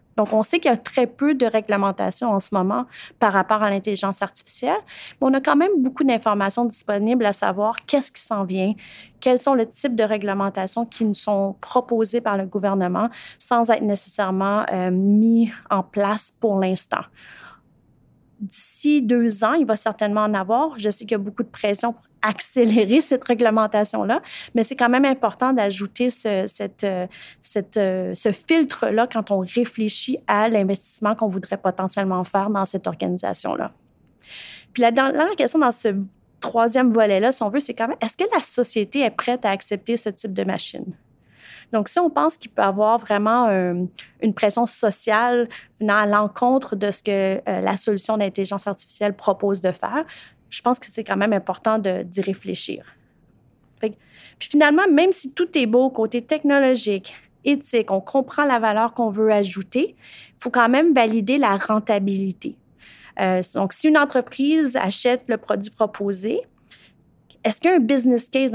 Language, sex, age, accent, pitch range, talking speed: French, female, 30-49, Canadian, 200-245 Hz, 175 wpm